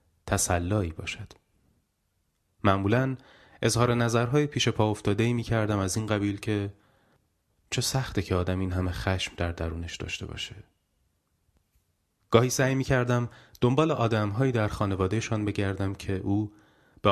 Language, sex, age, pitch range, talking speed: Persian, male, 30-49, 95-115 Hz, 130 wpm